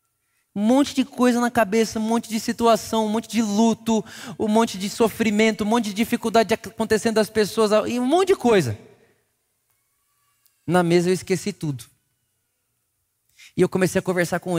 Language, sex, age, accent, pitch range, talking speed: Portuguese, male, 20-39, Brazilian, 135-195 Hz, 165 wpm